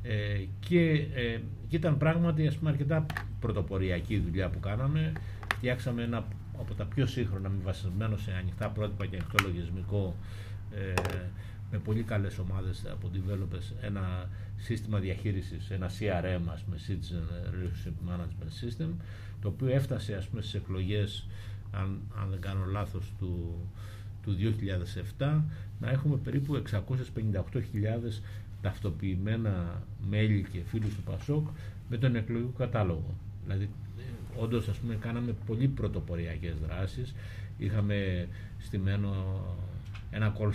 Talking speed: 120 wpm